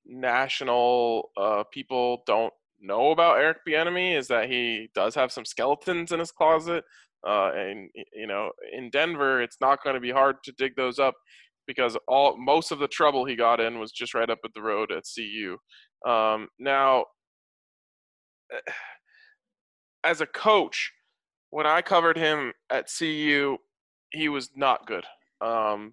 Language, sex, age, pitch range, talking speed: English, male, 20-39, 120-165 Hz, 155 wpm